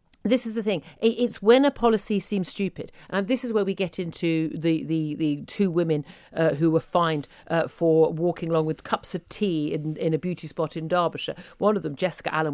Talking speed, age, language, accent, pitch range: 220 wpm, 50-69, English, British, 165-230 Hz